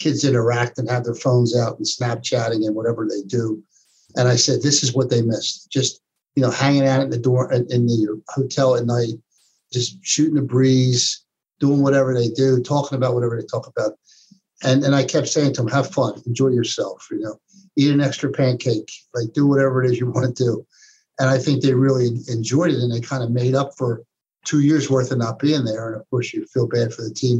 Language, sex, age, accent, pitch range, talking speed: English, male, 60-79, American, 120-145 Hz, 225 wpm